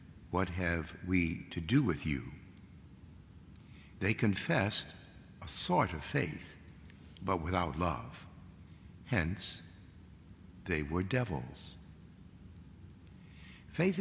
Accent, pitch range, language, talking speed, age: American, 80-100 Hz, English, 90 wpm, 60-79